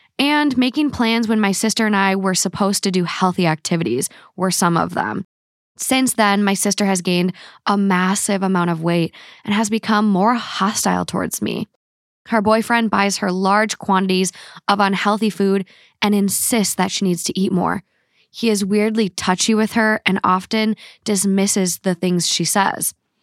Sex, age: female, 10-29